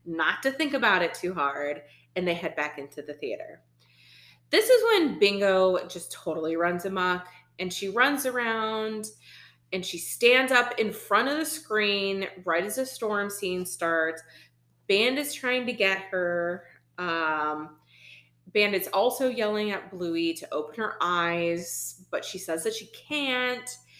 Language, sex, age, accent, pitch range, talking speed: English, female, 30-49, American, 165-250 Hz, 160 wpm